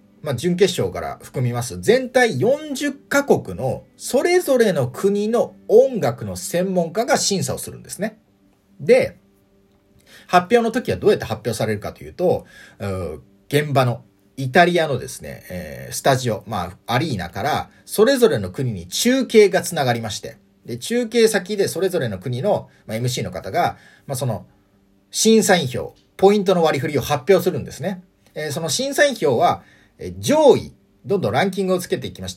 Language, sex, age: Japanese, male, 40-59